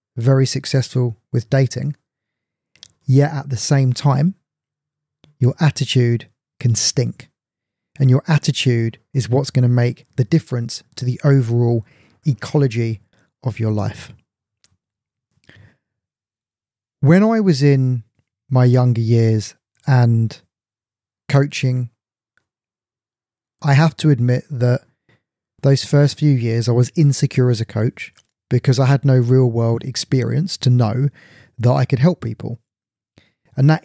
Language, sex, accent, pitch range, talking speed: English, male, British, 115-140 Hz, 125 wpm